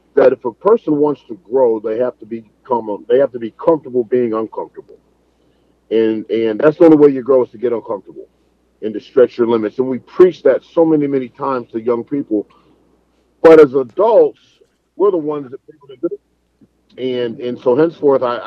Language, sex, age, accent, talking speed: English, male, 40-59, American, 195 wpm